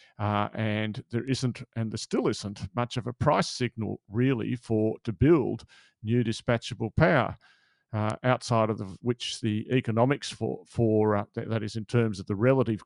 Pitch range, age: 110-125 Hz, 40-59